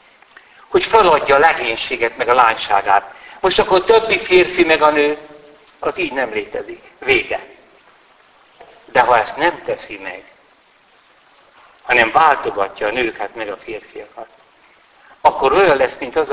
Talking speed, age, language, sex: 135 wpm, 60-79, Hungarian, male